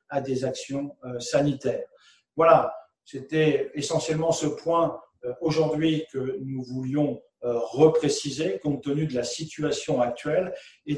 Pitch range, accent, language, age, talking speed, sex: 135-165 Hz, French, French, 50-69, 115 wpm, male